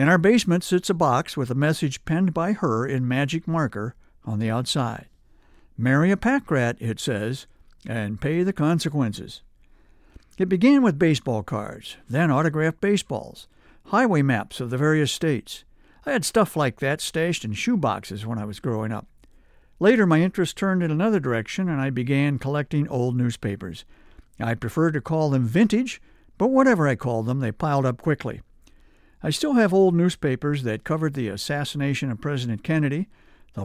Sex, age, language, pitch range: male, 60-79, English, 120-170 Hz